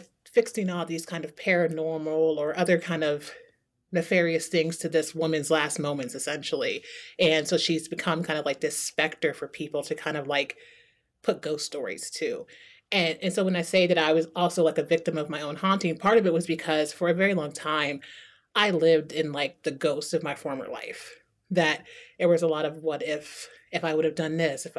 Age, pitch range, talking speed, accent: 30-49, 155-175 Hz, 215 wpm, American